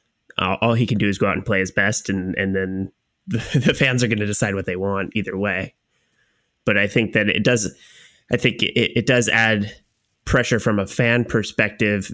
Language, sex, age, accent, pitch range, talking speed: English, male, 20-39, American, 95-110 Hz, 210 wpm